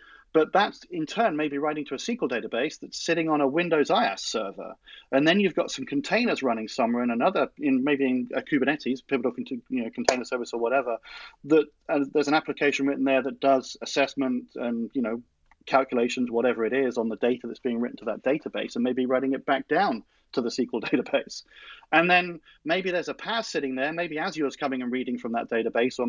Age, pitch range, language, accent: 40-59, 130-170 Hz, English, British